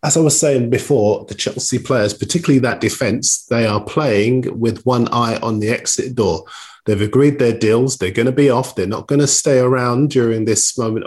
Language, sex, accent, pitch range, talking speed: English, male, British, 110-135 Hz, 210 wpm